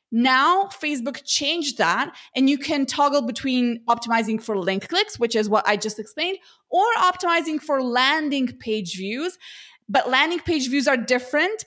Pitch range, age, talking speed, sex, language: 225-295 Hz, 20-39, 160 wpm, female, English